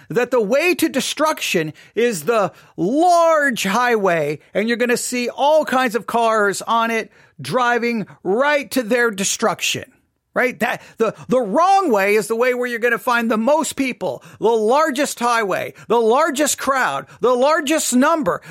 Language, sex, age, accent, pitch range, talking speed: English, male, 40-59, American, 225-300 Hz, 165 wpm